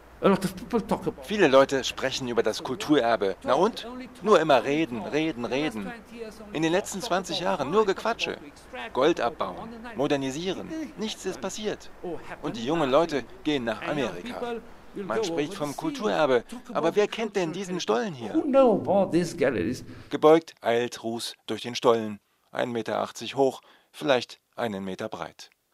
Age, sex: 40-59, male